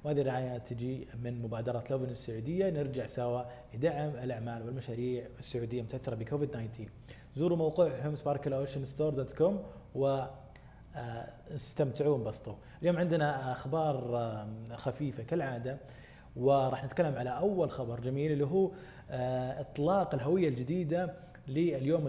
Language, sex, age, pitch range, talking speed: Arabic, male, 20-39, 120-150 Hz, 110 wpm